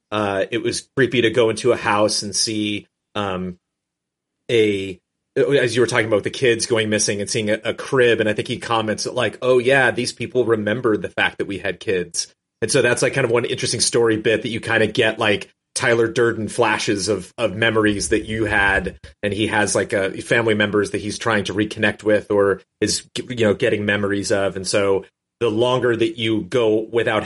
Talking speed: 215 wpm